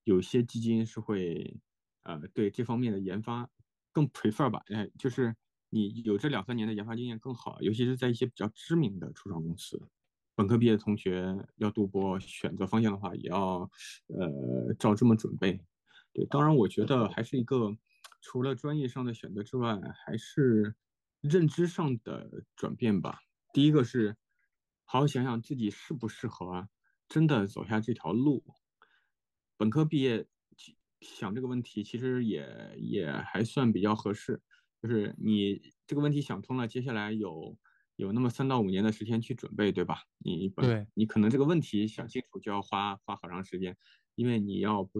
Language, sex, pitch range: Chinese, male, 105-125 Hz